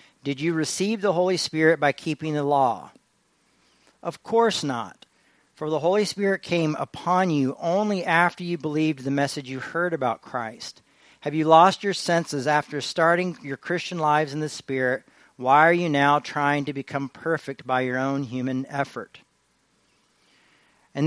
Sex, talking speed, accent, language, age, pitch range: male, 160 wpm, American, English, 40-59, 135-175 Hz